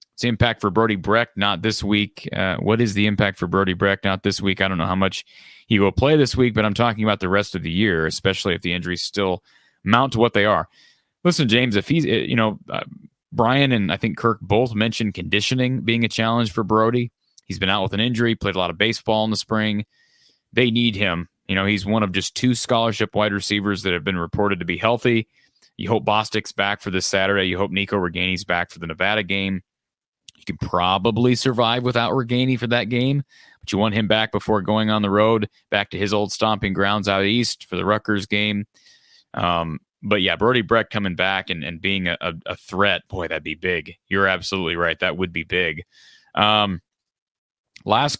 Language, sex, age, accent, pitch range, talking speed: English, male, 30-49, American, 95-115 Hz, 215 wpm